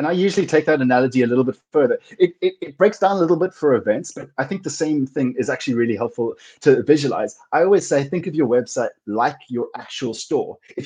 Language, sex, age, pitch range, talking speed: English, male, 30-49, 130-195 Hz, 245 wpm